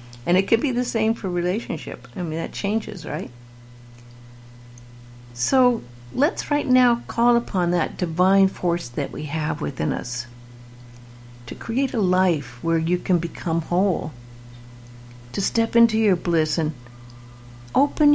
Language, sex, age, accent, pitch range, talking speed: English, female, 60-79, American, 120-200 Hz, 140 wpm